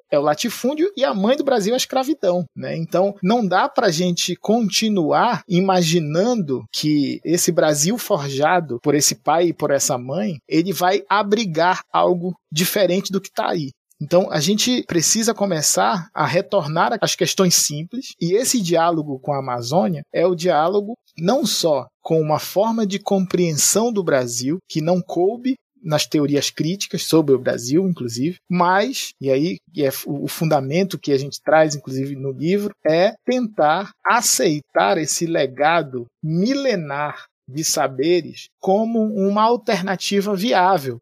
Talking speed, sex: 150 wpm, male